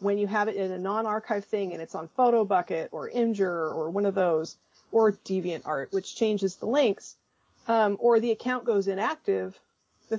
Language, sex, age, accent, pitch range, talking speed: English, female, 30-49, American, 190-220 Hz, 185 wpm